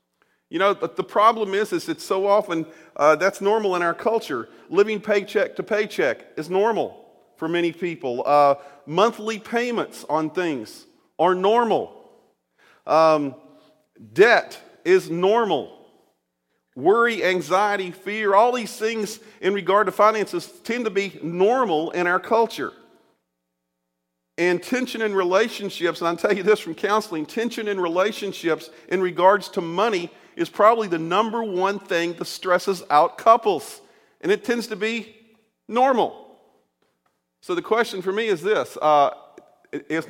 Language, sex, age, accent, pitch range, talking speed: English, male, 40-59, American, 165-220 Hz, 145 wpm